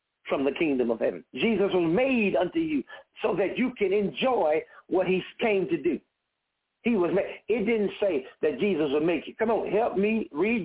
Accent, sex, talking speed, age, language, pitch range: American, male, 205 wpm, 60-79, English, 185-260 Hz